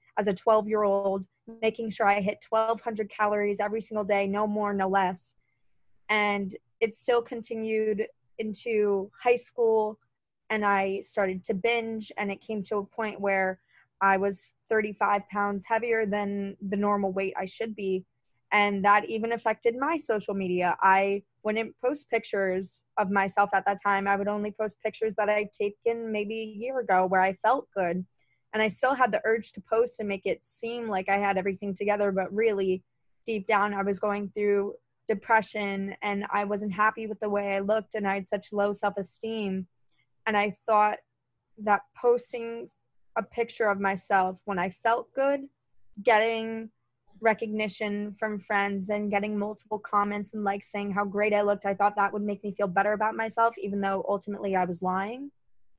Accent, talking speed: American, 180 wpm